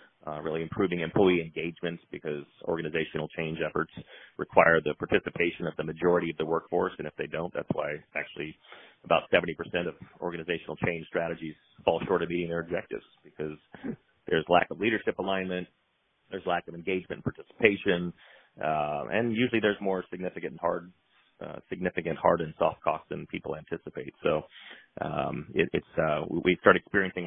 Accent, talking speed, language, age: American, 165 wpm, English, 30-49